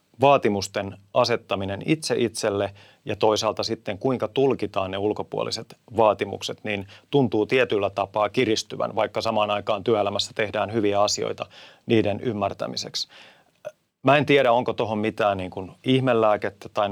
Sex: male